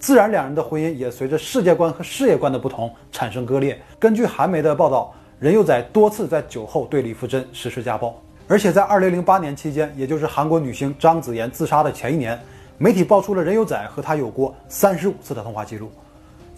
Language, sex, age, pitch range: Chinese, male, 20-39, 130-180 Hz